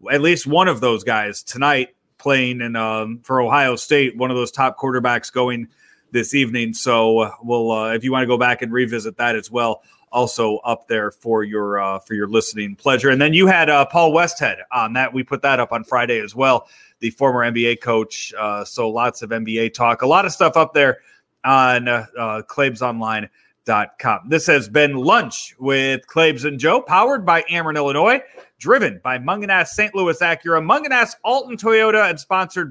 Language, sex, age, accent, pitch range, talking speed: English, male, 30-49, American, 120-165 Hz, 195 wpm